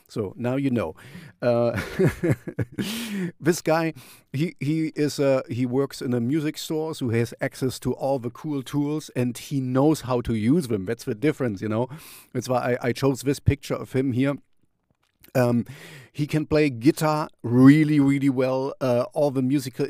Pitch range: 115-145 Hz